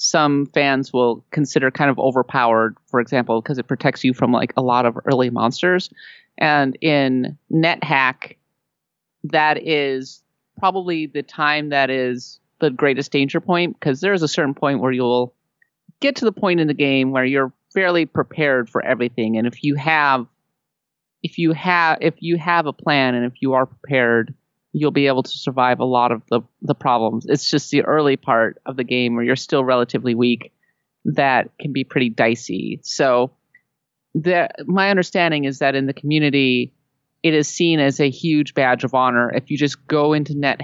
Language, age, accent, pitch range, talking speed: English, 30-49, American, 130-155 Hz, 190 wpm